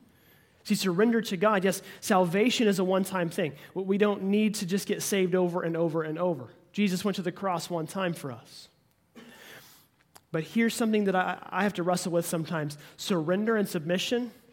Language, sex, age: English, male, 30-49